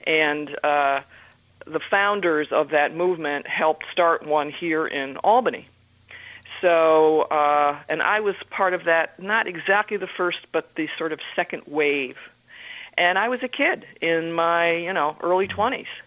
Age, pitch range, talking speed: 50-69, 155-185 Hz, 155 wpm